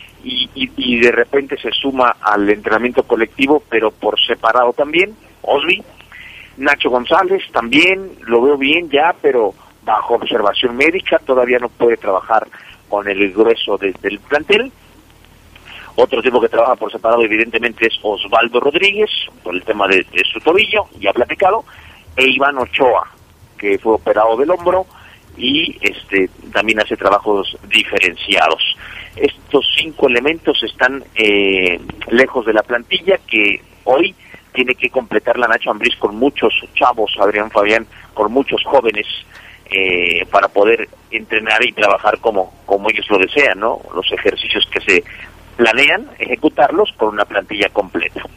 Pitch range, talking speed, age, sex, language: 105-155 Hz, 145 wpm, 50-69, male, Spanish